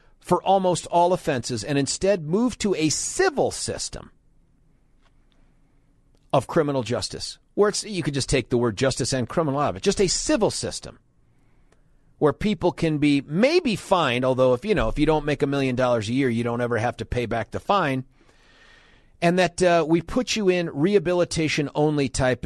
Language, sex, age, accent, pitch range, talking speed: English, male, 40-59, American, 140-205 Hz, 185 wpm